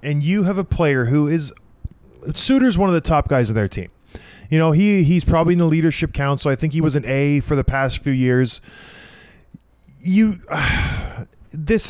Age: 20-39